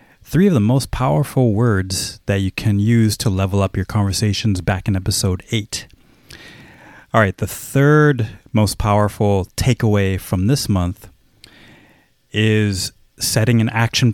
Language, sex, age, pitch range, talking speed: English, male, 30-49, 100-120 Hz, 140 wpm